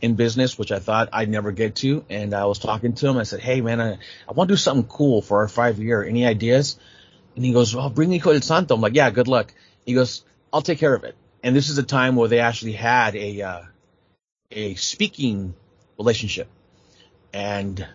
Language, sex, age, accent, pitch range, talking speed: English, male, 30-49, American, 100-130 Hz, 220 wpm